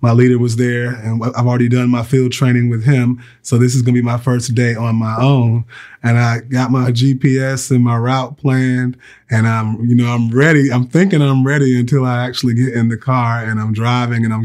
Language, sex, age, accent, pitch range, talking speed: English, male, 20-39, American, 115-135 Hz, 235 wpm